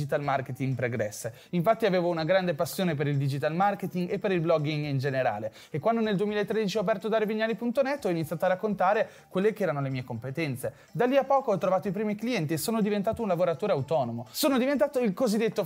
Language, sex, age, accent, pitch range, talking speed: Italian, male, 30-49, native, 160-225 Hz, 205 wpm